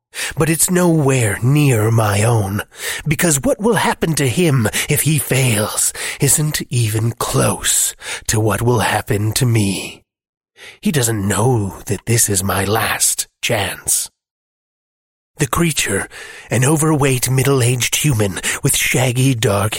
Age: 30-49